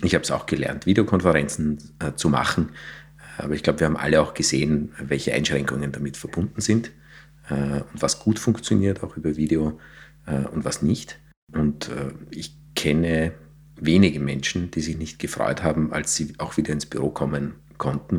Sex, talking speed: male, 175 wpm